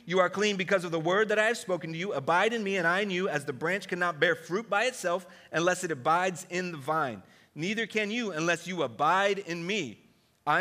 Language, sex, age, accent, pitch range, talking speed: English, male, 40-59, American, 165-215 Hz, 245 wpm